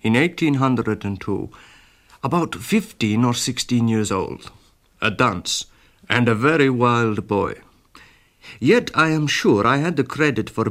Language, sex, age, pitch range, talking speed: English, male, 60-79, 110-145 Hz, 135 wpm